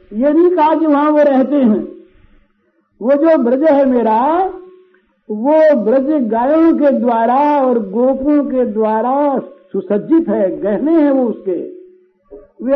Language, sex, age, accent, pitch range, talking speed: Hindi, male, 60-79, native, 205-290 Hz, 125 wpm